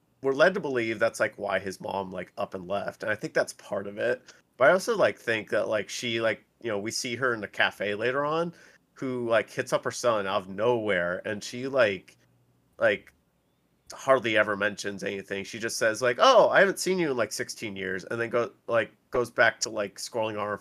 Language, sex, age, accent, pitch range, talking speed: English, male, 30-49, American, 100-120 Hz, 235 wpm